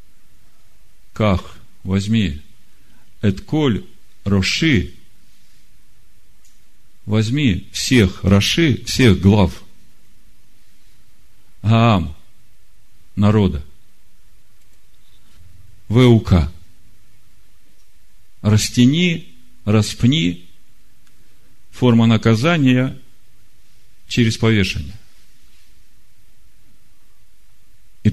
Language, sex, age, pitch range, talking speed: Russian, male, 50-69, 95-115 Hz, 40 wpm